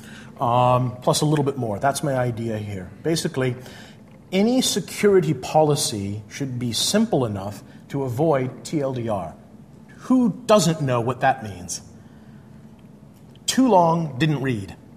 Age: 40-59